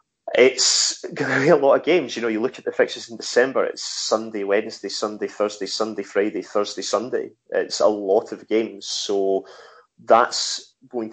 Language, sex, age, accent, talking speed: English, male, 30-49, British, 185 wpm